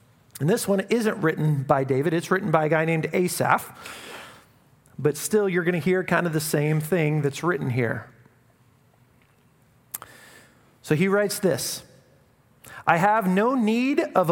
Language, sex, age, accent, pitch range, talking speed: English, male, 40-59, American, 145-190 Hz, 155 wpm